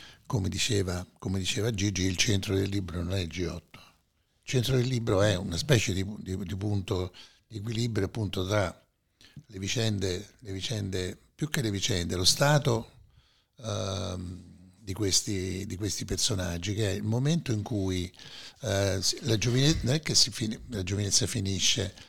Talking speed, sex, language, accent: 155 wpm, male, Italian, native